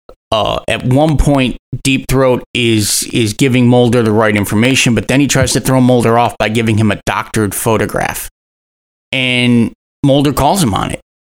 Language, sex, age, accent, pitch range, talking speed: English, male, 30-49, American, 105-125 Hz, 175 wpm